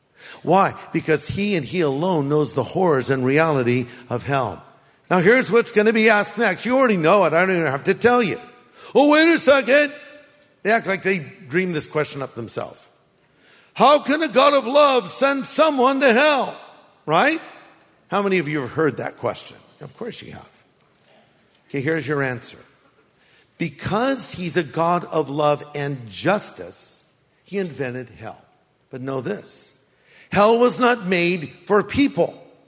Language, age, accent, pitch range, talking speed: English, 50-69, American, 155-215 Hz, 175 wpm